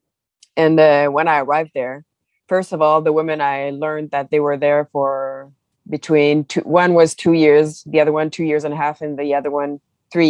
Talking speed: 215 wpm